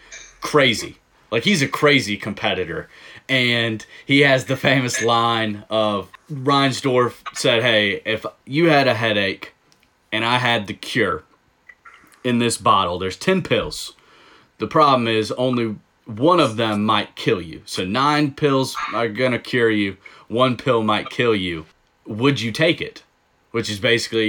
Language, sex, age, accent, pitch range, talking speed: English, male, 30-49, American, 105-145 Hz, 150 wpm